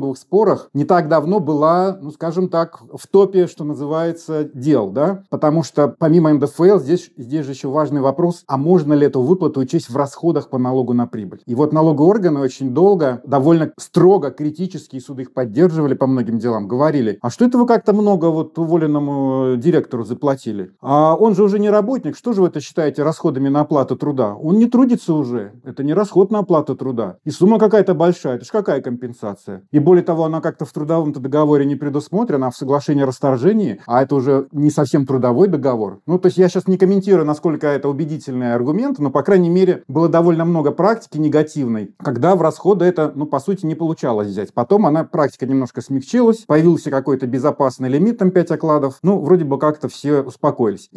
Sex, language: male, Russian